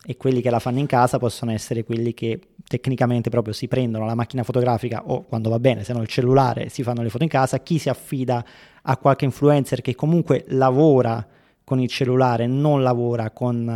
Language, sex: Italian, male